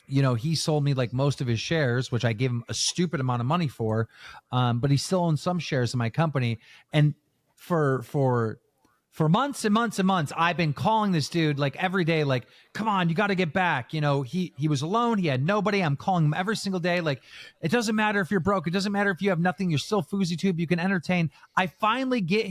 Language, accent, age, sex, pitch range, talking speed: English, American, 30-49, male, 145-200 Hz, 250 wpm